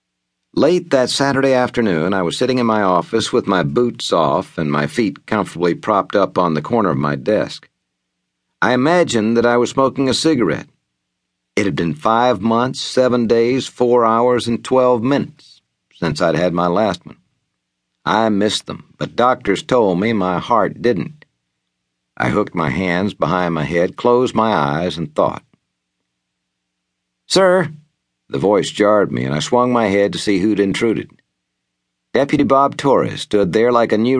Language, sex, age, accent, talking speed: English, male, 60-79, American, 170 wpm